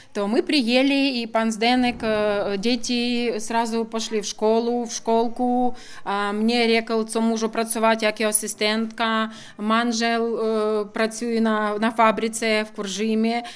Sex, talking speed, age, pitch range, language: female, 125 wpm, 20-39, 215-240 Hz, Czech